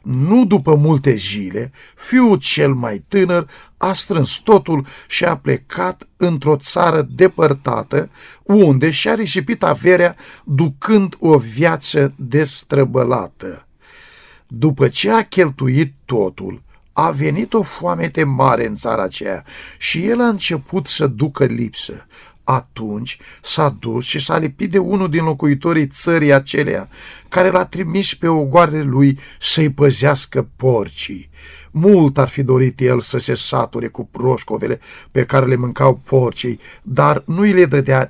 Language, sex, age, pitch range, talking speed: Romanian, male, 50-69, 130-175 Hz, 135 wpm